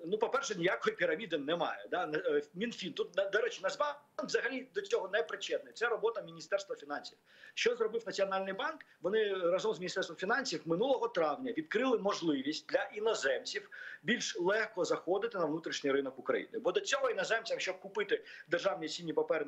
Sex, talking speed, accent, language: male, 155 wpm, native, Ukrainian